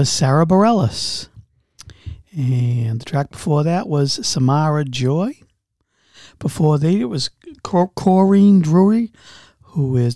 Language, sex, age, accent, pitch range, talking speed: English, male, 50-69, American, 130-180 Hz, 110 wpm